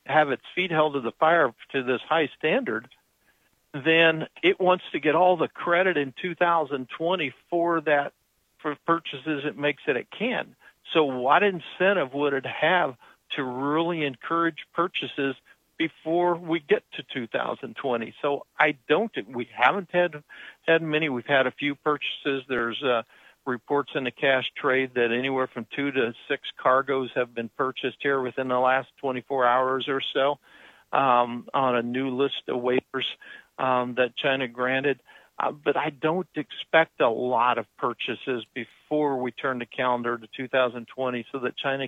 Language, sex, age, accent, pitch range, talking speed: English, male, 60-79, American, 130-165 Hz, 160 wpm